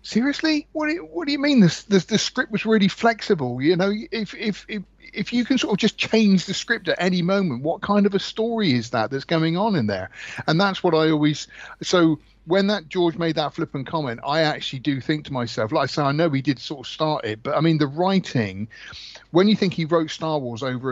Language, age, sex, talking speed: English, 50-69, male, 250 wpm